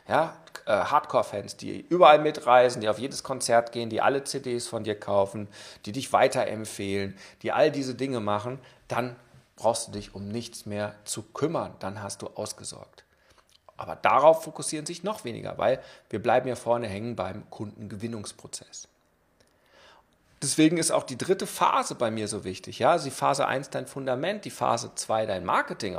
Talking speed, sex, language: 165 wpm, male, German